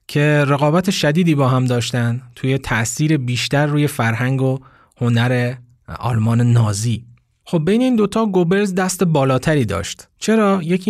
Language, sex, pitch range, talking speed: Persian, male, 120-165 Hz, 145 wpm